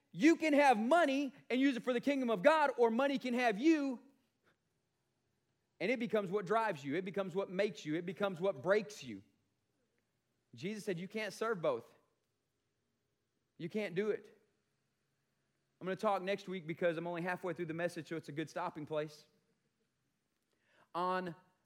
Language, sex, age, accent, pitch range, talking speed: English, male, 30-49, American, 180-250 Hz, 175 wpm